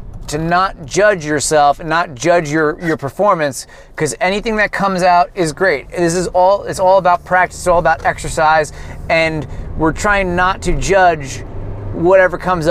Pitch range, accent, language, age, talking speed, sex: 150-185 Hz, American, English, 30-49, 170 wpm, male